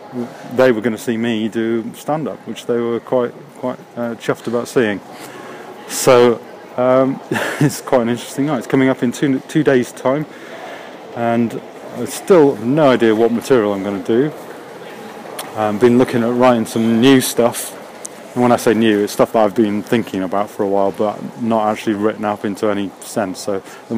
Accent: British